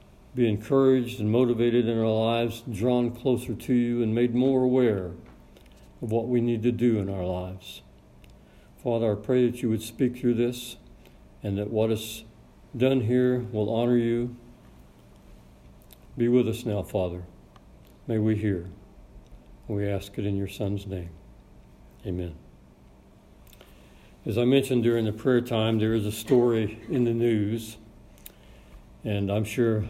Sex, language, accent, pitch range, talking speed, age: male, English, American, 95-120 Hz, 150 wpm, 60-79